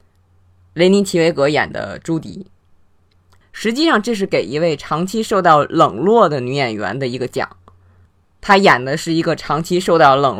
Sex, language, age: female, Chinese, 20-39